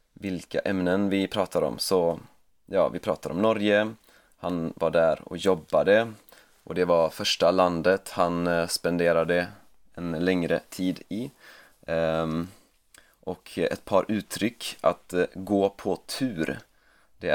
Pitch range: 85-95 Hz